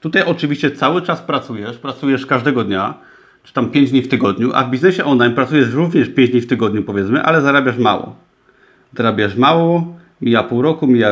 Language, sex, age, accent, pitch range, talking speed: Polish, male, 30-49, native, 120-155 Hz, 185 wpm